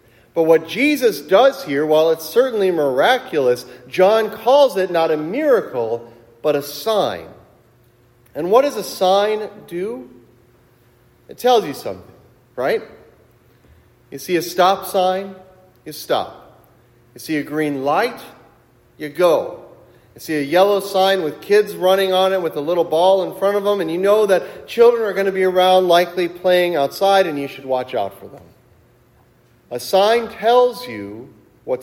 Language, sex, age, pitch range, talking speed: English, male, 40-59, 125-185 Hz, 160 wpm